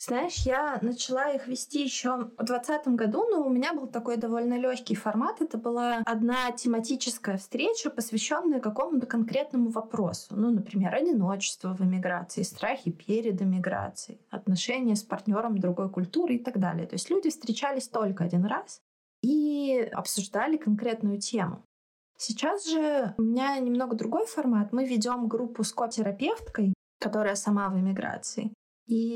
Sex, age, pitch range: female, 20-39, 210-260 Hz